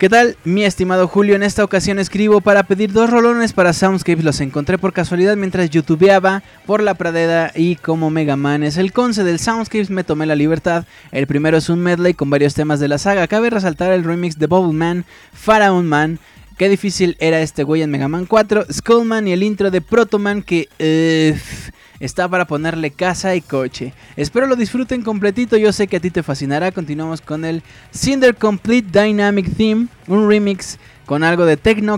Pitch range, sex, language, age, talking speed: 160-210 Hz, male, Spanish, 20-39, 195 wpm